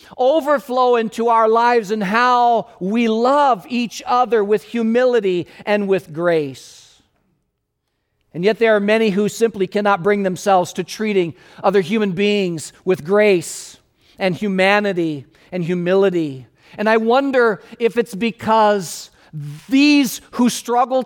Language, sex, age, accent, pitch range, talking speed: English, male, 50-69, American, 185-235 Hz, 130 wpm